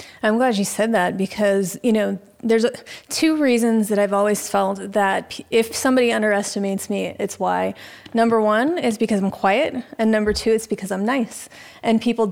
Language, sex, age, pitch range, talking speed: English, female, 30-49, 200-235 Hz, 180 wpm